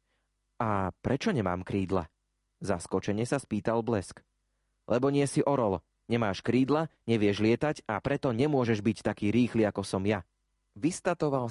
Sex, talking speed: male, 135 wpm